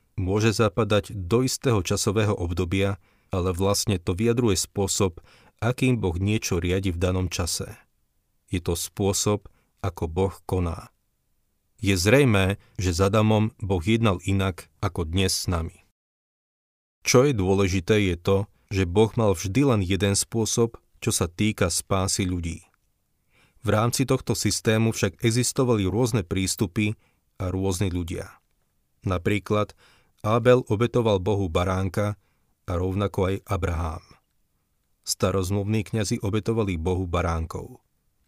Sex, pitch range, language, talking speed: male, 95-110 Hz, Slovak, 120 wpm